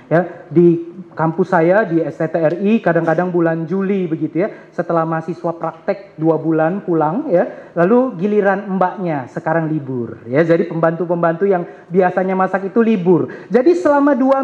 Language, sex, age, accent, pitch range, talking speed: Indonesian, male, 30-49, native, 170-250 Hz, 140 wpm